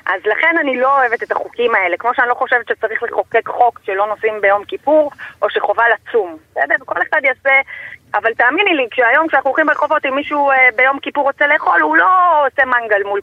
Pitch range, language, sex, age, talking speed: 205-290 Hz, Hebrew, female, 30-49, 200 wpm